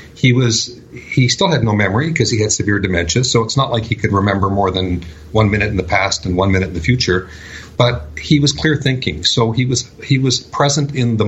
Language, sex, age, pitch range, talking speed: English, male, 50-69, 100-125 Hz, 240 wpm